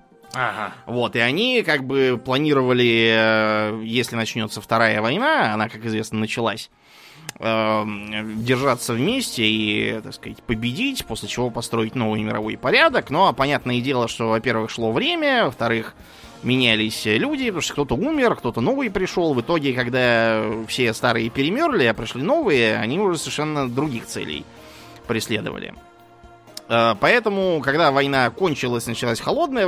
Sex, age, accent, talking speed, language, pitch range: male, 20-39, native, 130 wpm, Russian, 110-135 Hz